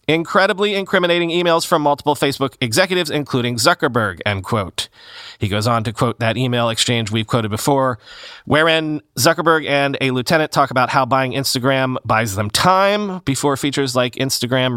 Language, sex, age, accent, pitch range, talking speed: English, male, 30-49, American, 120-175 Hz, 160 wpm